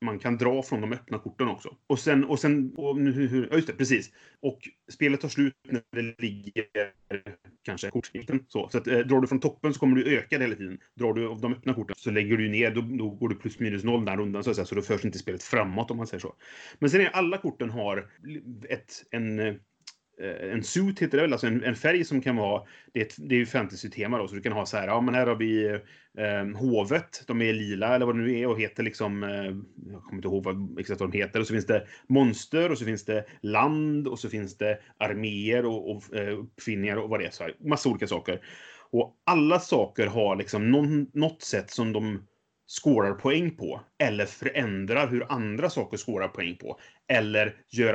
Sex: male